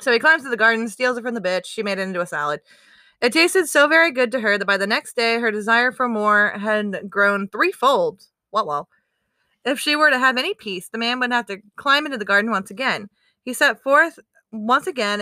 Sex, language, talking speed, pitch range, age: female, English, 240 wpm, 205-275 Hz, 20-39